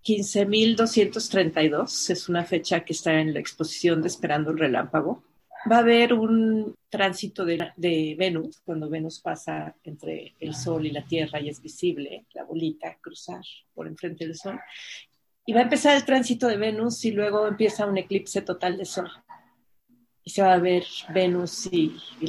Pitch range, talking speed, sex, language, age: 165-205 Hz, 170 wpm, female, Spanish, 40-59